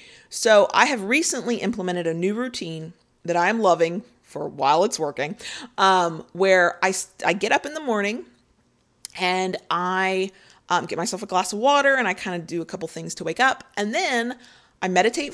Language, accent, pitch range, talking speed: English, American, 170-225 Hz, 190 wpm